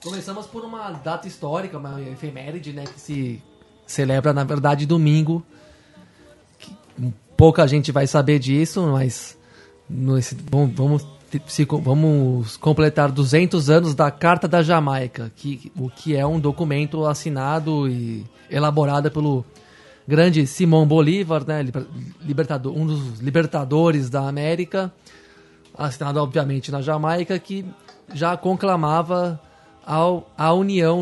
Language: Portuguese